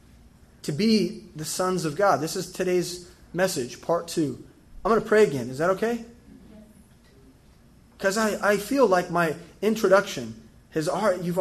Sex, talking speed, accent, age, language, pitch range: male, 160 wpm, American, 20-39, English, 125-180 Hz